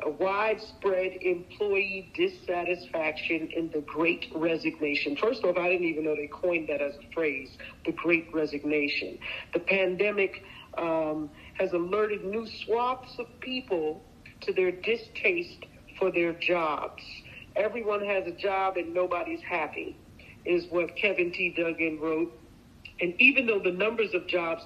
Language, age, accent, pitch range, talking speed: English, 50-69, American, 155-195 Hz, 145 wpm